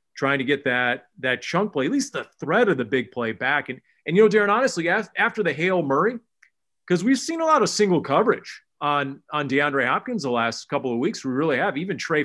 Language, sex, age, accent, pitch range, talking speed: English, male, 30-49, American, 125-165 Hz, 230 wpm